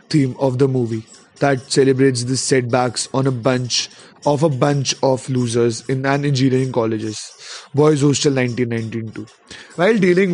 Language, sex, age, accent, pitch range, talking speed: English, male, 20-39, Indian, 125-145 Hz, 145 wpm